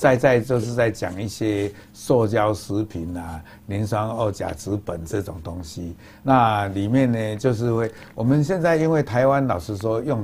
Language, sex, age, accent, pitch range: Chinese, male, 60-79, American, 90-110 Hz